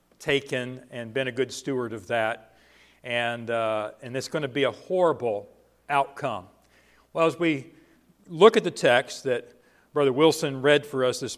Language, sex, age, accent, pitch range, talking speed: English, male, 50-69, American, 130-150 Hz, 170 wpm